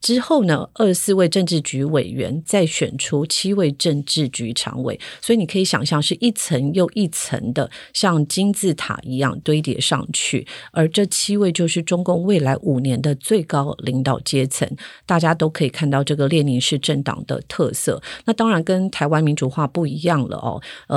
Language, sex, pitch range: Chinese, female, 140-175 Hz